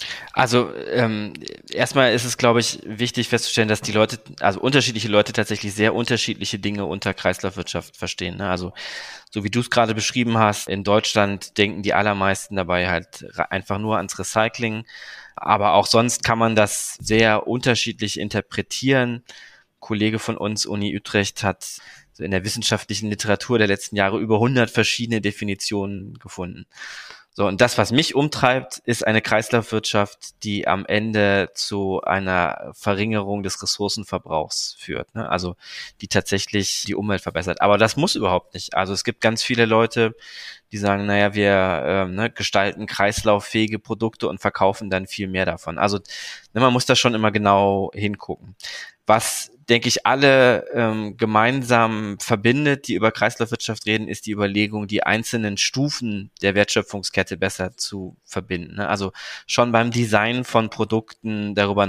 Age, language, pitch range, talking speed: 20-39, German, 100-115 Hz, 150 wpm